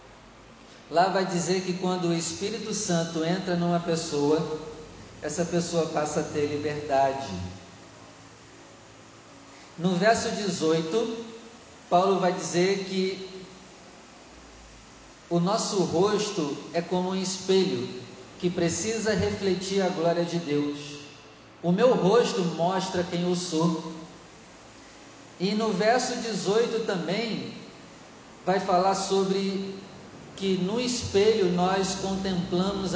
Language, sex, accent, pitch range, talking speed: Portuguese, male, Brazilian, 160-195 Hz, 105 wpm